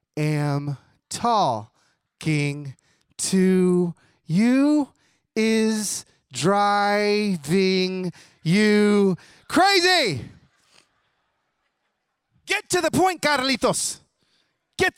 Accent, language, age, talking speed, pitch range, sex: American, English, 30-49, 55 wpm, 155-230 Hz, male